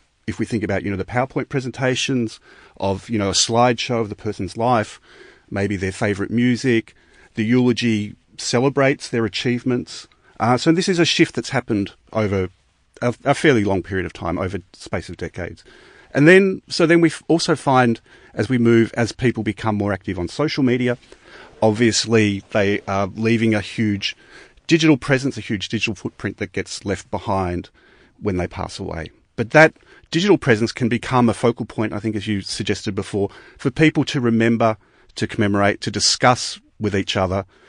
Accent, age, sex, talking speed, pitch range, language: Australian, 40-59, male, 175 wpm, 100-120 Hz, English